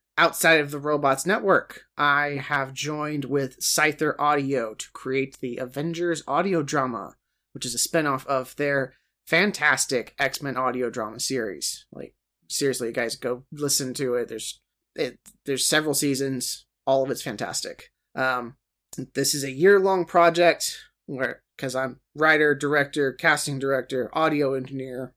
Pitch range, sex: 130-155 Hz, male